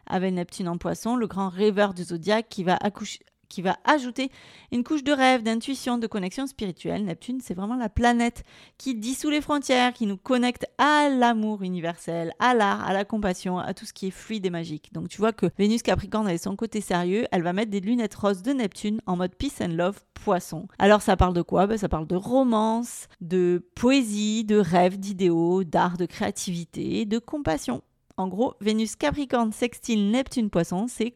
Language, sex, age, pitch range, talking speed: French, female, 40-59, 185-250 Hz, 195 wpm